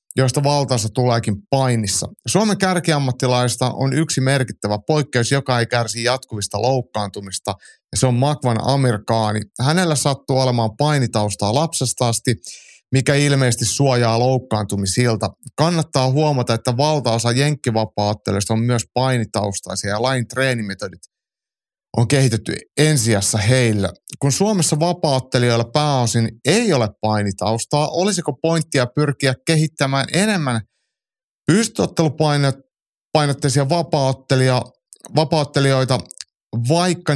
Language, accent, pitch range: Finnish, native, 110-145 Hz